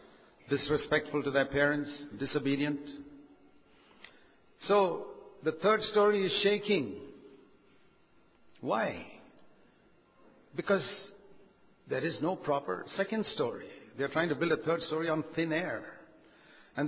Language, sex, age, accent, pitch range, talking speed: English, male, 60-79, Indian, 145-200 Hz, 110 wpm